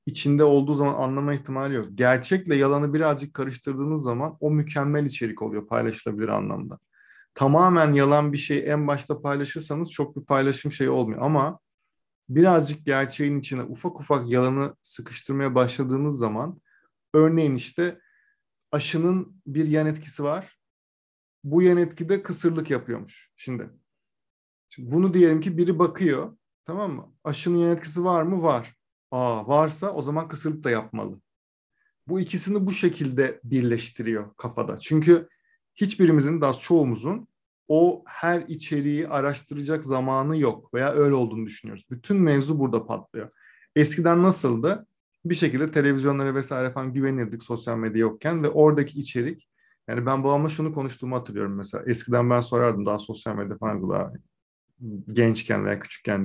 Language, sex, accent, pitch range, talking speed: Turkish, male, native, 125-160 Hz, 135 wpm